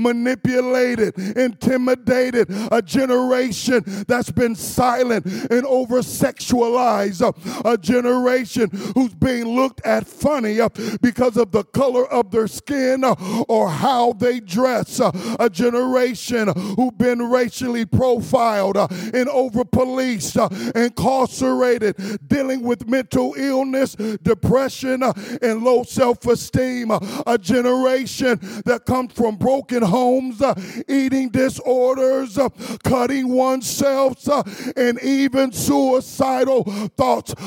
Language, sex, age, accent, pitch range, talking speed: English, male, 40-59, American, 200-255 Hz, 100 wpm